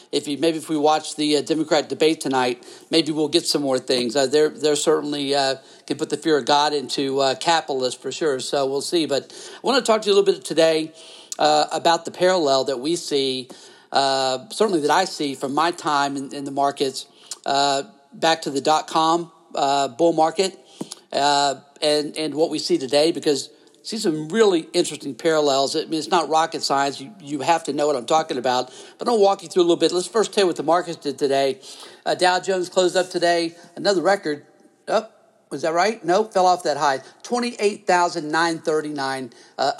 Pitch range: 145-170 Hz